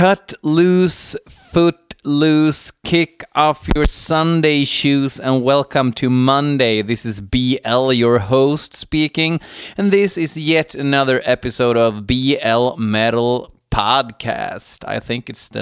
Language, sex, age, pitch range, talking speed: Swedish, male, 30-49, 110-145 Hz, 125 wpm